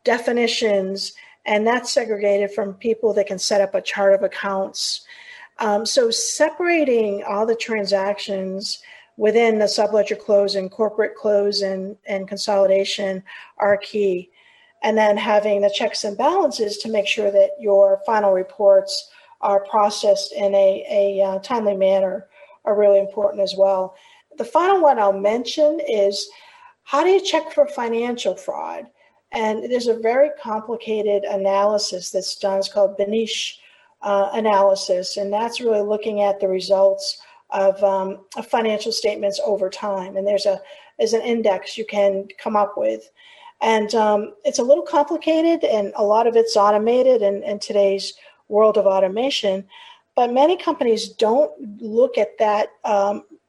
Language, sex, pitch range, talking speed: English, female, 200-250 Hz, 150 wpm